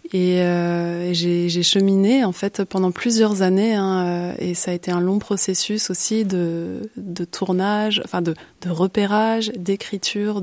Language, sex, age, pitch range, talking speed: French, female, 20-39, 180-205 Hz, 160 wpm